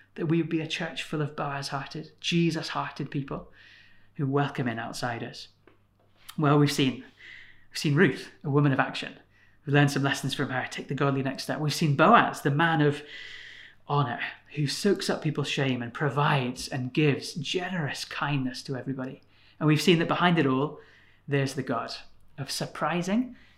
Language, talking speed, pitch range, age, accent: English, 175 wpm, 135-165 Hz, 30-49, British